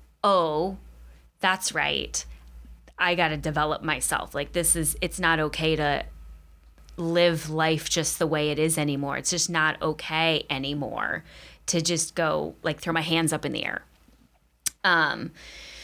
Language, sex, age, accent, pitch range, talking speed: English, female, 20-39, American, 150-175 Hz, 150 wpm